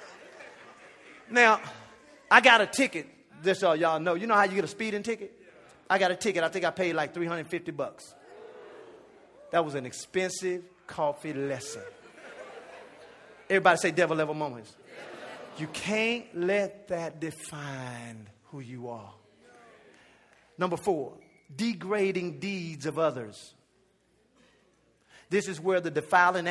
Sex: male